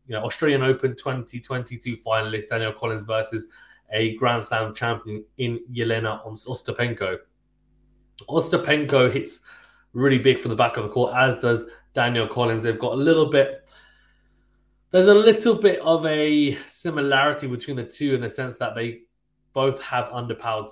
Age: 20-39